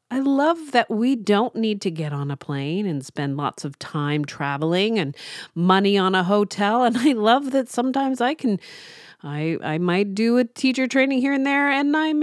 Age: 40-59